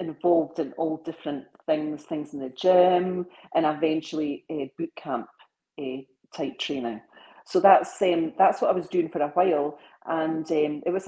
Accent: British